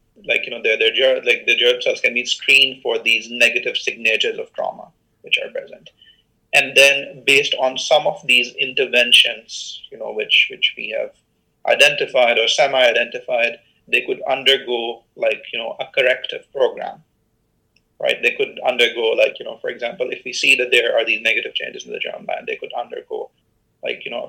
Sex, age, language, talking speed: male, 30-49, English, 190 wpm